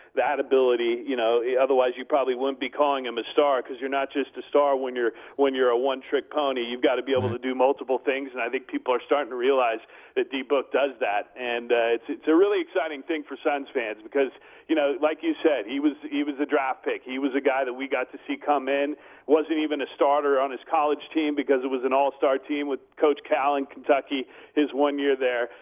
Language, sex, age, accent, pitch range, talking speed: English, male, 40-59, American, 130-165 Hz, 245 wpm